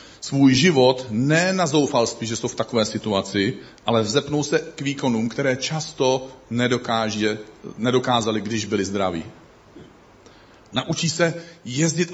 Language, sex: Czech, male